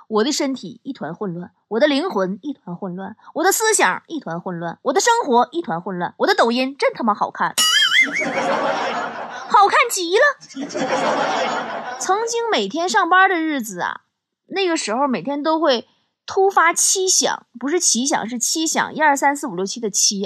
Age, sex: 20-39, female